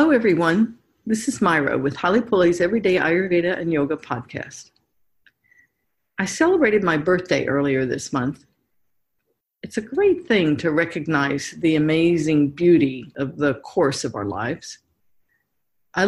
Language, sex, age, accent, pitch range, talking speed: English, female, 50-69, American, 155-210 Hz, 135 wpm